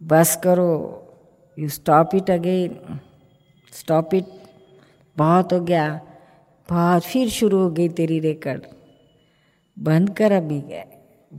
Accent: native